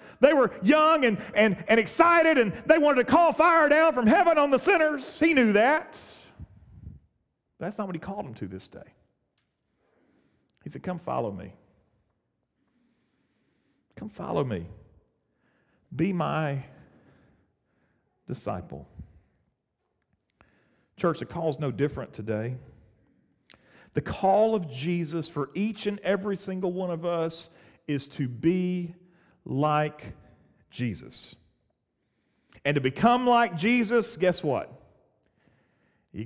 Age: 40-59